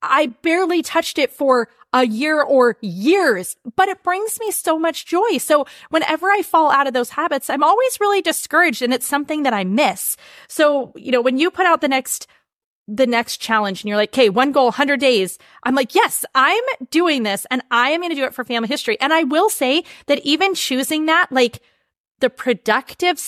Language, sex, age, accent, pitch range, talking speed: English, female, 30-49, American, 230-310 Hz, 210 wpm